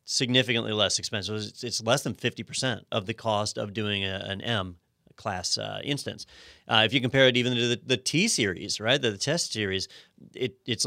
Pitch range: 105-130 Hz